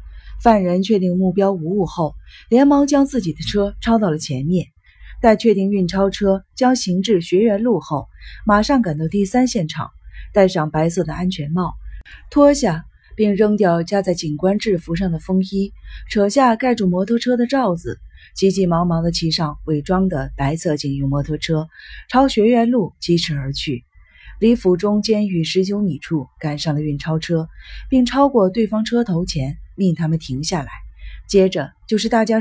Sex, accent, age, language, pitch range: female, native, 30-49, Chinese, 155-215 Hz